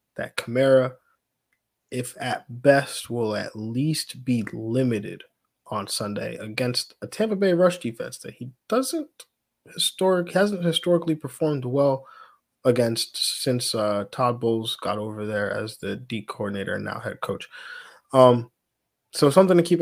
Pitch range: 120-145 Hz